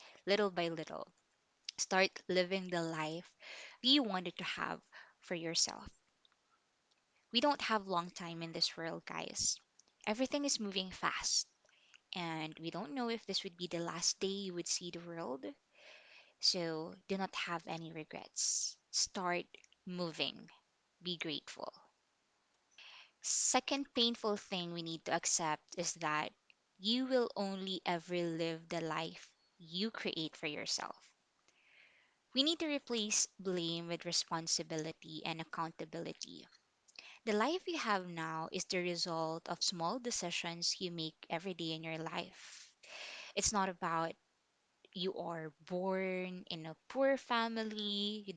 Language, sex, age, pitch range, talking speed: English, female, 20-39, 165-200 Hz, 135 wpm